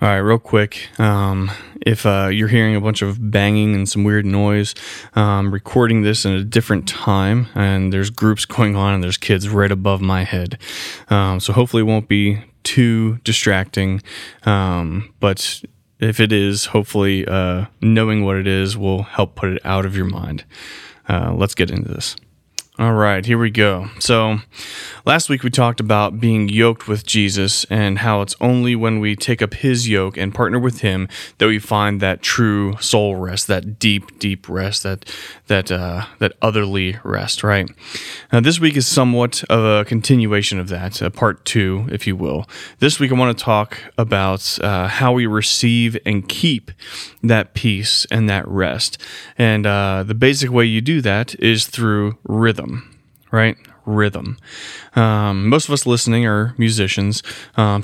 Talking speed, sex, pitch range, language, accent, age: 175 wpm, male, 100-115 Hz, English, American, 20-39